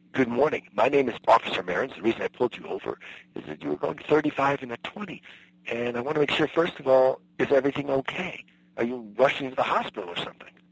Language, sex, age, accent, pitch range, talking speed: English, male, 50-69, American, 95-145 Hz, 235 wpm